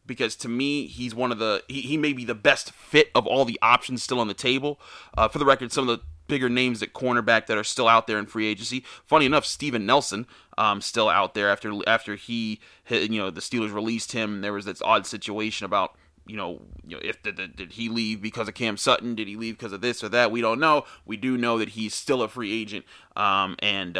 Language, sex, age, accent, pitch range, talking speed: English, male, 30-49, American, 105-125 Hz, 255 wpm